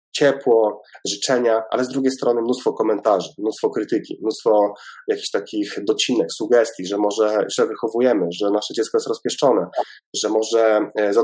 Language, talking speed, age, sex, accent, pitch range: Polish, 145 wpm, 20-39, male, native, 115-165 Hz